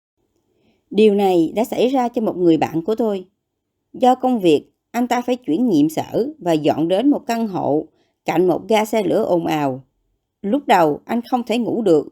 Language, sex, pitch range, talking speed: Vietnamese, male, 190-275 Hz, 200 wpm